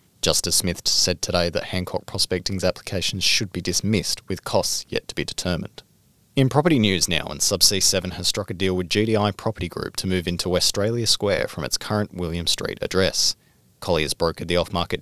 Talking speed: 190 wpm